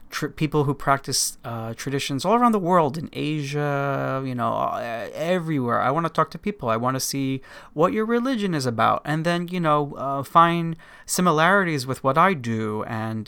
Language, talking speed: English, 185 wpm